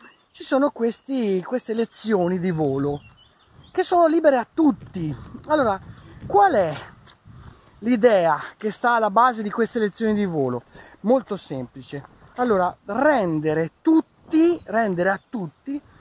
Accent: native